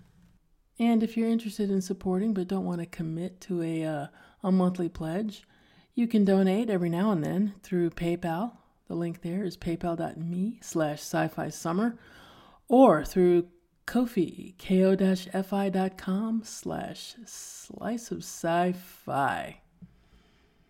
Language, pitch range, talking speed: English, 175-210 Hz, 115 wpm